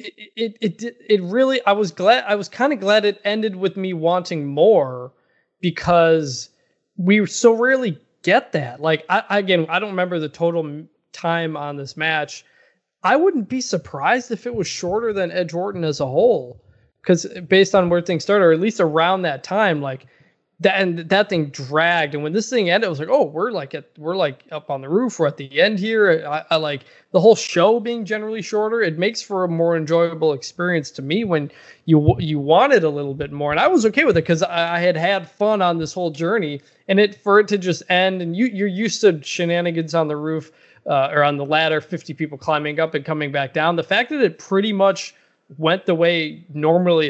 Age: 20-39